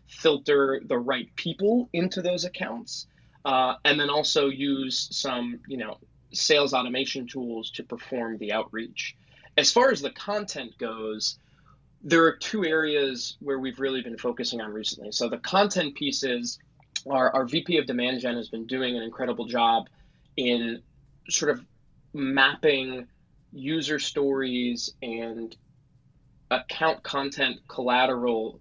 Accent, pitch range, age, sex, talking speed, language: American, 120-150 Hz, 20-39, male, 135 wpm, English